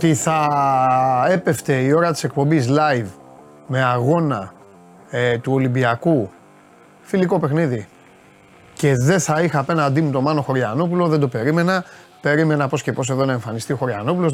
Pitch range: 120-155 Hz